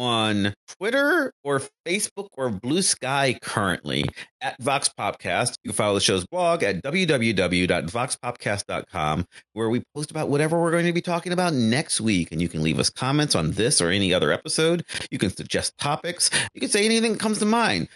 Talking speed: 185 wpm